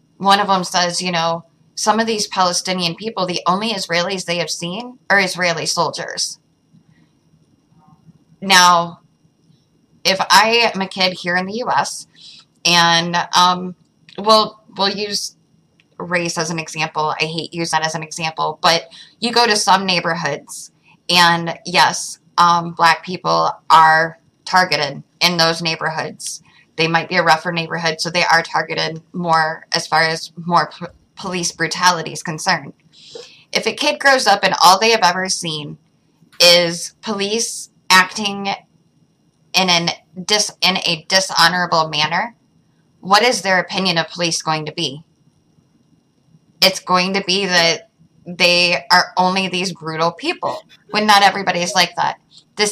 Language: English